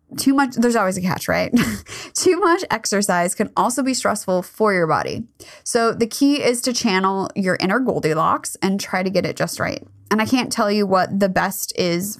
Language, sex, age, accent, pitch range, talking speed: English, female, 20-39, American, 175-230 Hz, 205 wpm